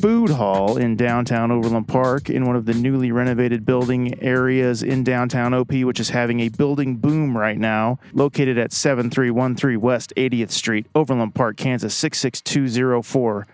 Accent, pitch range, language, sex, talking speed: American, 110-130 Hz, English, male, 155 wpm